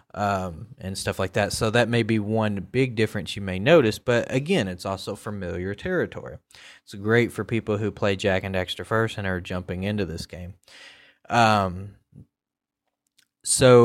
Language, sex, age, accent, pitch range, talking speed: English, male, 20-39, American, 95-115 Hz, 170 wpm